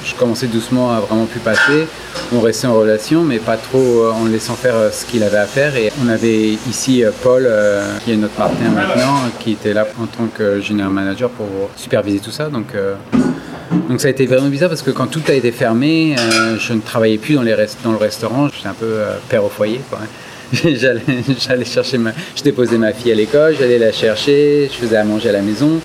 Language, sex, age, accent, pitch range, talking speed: French, male, 30-49, French, 110-130 Hz, 240 wpm